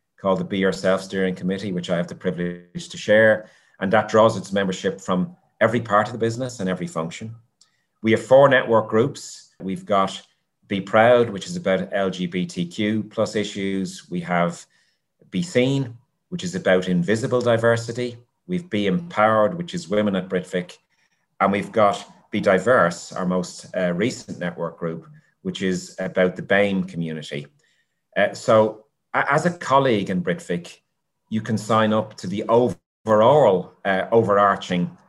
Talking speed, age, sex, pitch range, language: 155 wpm, 30-49, male, 90-120 Hz, English